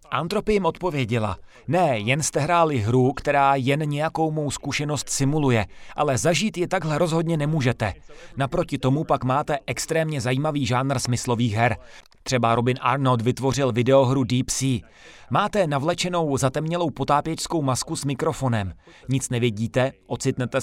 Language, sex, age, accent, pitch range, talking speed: Czech, male, 30-49, native, 125-155 Hz, 130 wpm